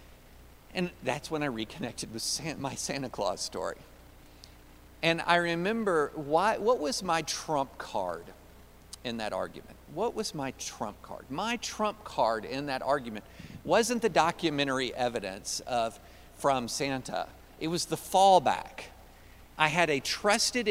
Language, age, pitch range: English, 50-69, 130-175 Hz